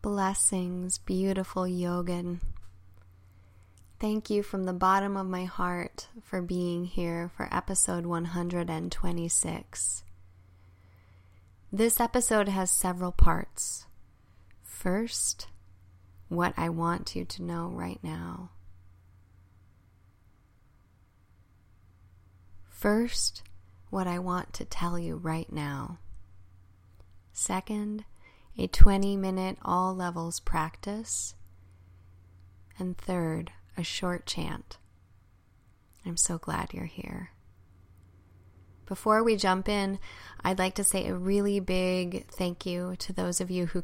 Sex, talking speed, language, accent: female, 100 wpm, English, American